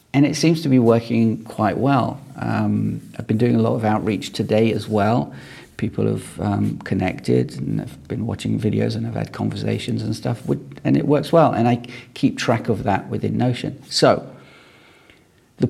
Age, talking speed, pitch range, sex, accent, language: 40-59, 185 wpm, 110-130 Hz, male, British, English